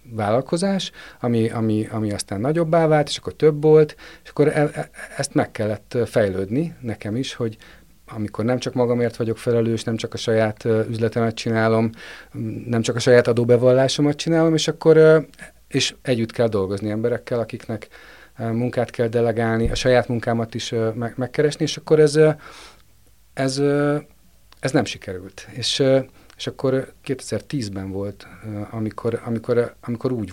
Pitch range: 110-140 Hz